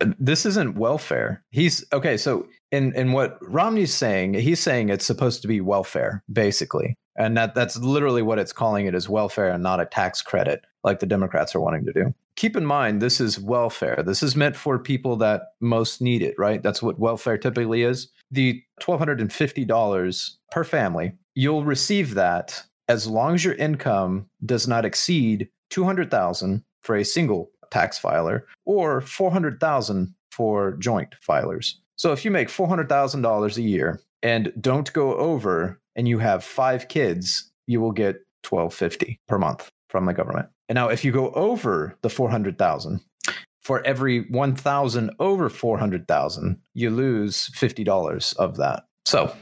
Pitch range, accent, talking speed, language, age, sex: 110-140 Hz, American, 160 wpm, English, 30-49, male